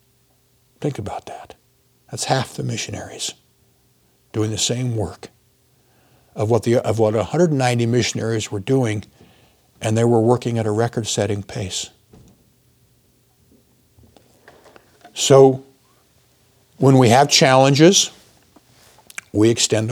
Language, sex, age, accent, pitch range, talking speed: English, male, 60-79, American, 110-130 Hz, 105 wpm